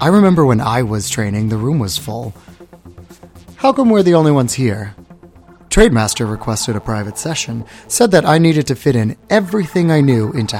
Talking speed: 185 wpm